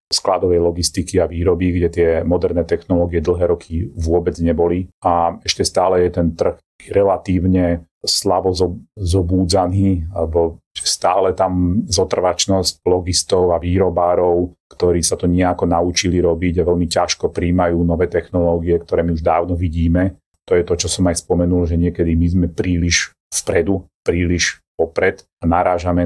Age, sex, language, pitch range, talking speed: 40-59, male, Slovak, 85-95 Hz, 145 wpm